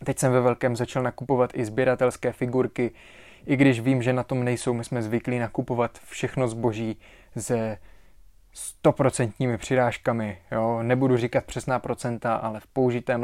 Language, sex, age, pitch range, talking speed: Czech, male, 20-39, 110-125 Hz, 150 wpm